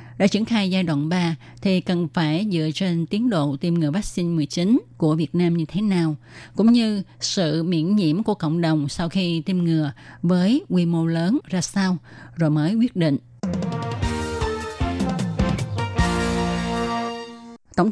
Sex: female